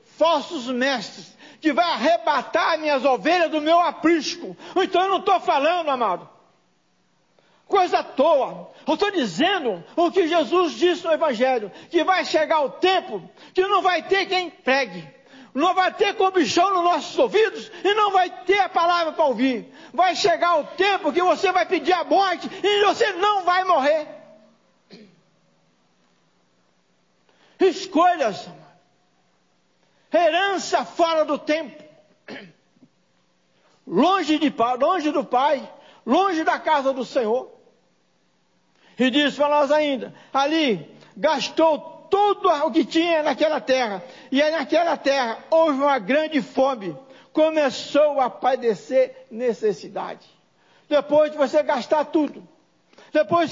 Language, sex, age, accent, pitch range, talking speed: Portuguese, male, 60-79, Brazilian, 275-350 Hz, 130 wpm